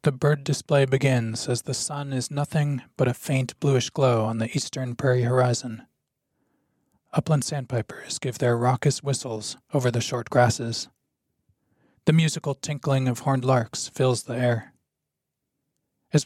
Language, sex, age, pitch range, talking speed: English, male, 20-39, 120-145 Hz, 145 wpm